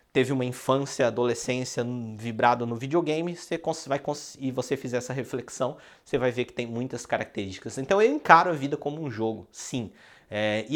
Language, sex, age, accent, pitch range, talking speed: Portuguese, male, 20-39, Brazilian, 115-180 Hz, 195 wpm